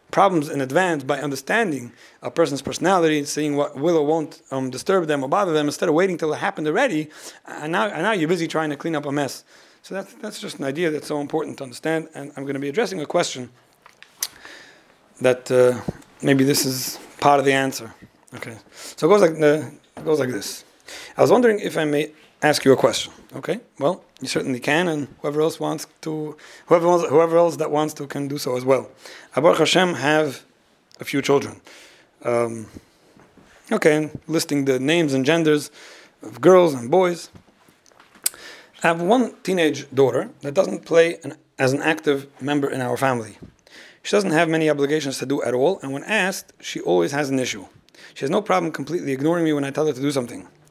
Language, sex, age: English, male, 30-49